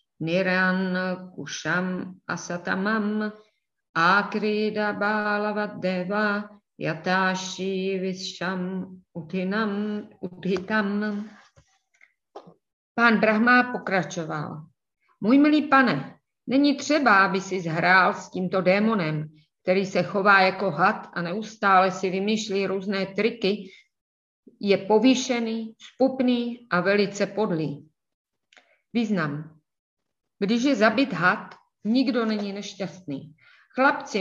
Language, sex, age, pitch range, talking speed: Czech, female, 30-49, 185-230 Hz, 85 wpm